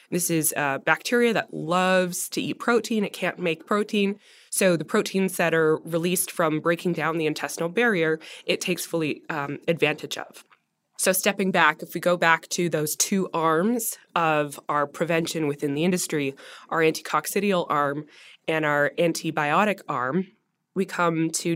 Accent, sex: American, female